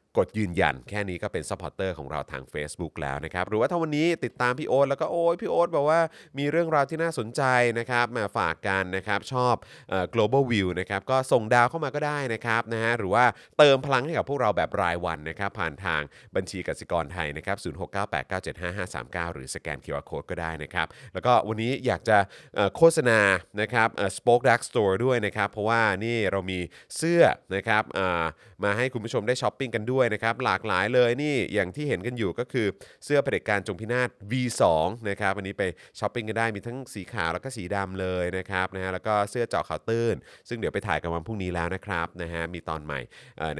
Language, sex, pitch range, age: Thai, male, 85-120 Hz, 30-49